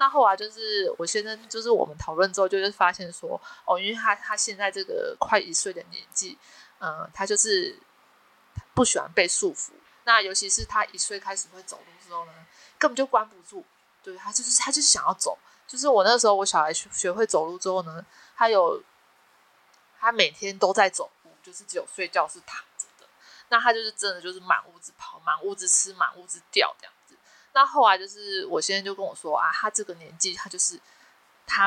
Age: 20-39